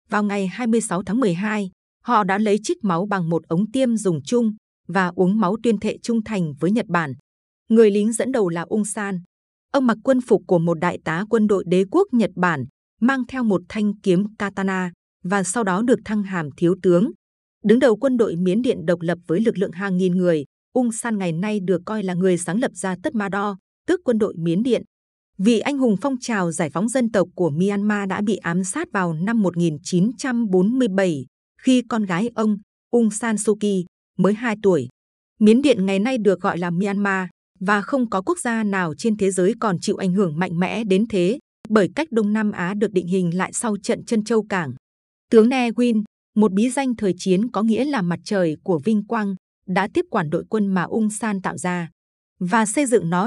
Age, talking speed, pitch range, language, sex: 20-39, 215 wpm, 180-225 Hz, Vietnamese, female